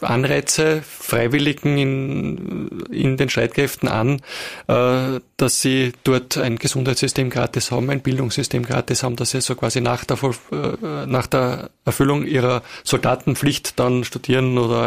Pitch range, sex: 120-135 Hz, male